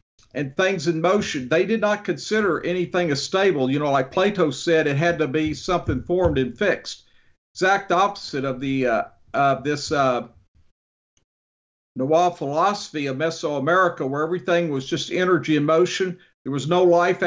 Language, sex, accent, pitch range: English, male, American, 135-175 Hz